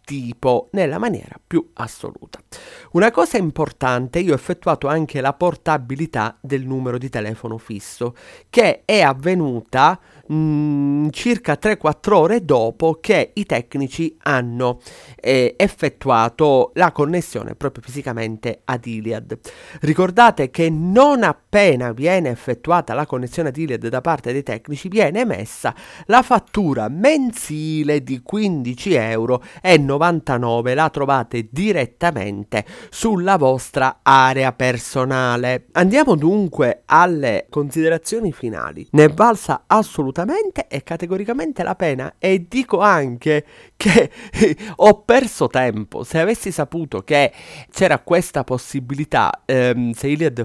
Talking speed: 120 wpm